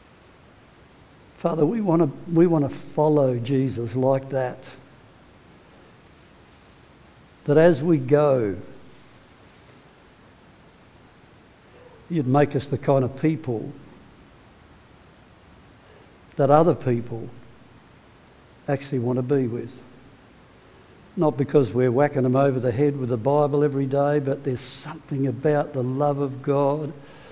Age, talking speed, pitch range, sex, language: 60-79, 110 wpm, 120-145 Hz, male, English